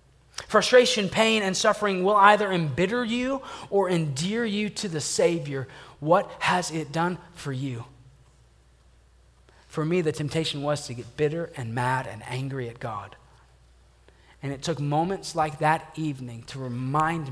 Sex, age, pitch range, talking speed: male, 30-49, 140-195 Hz, 150 wpm